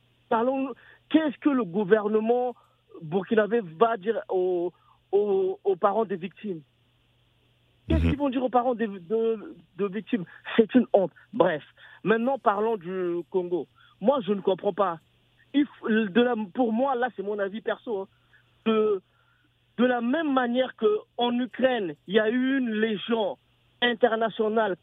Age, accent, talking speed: 50-69, French, 150 wpm